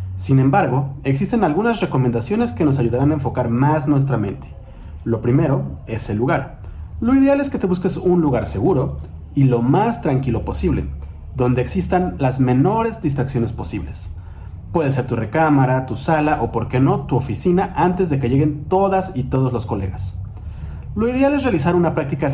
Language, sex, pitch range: Spanish, male, 105-170 Hz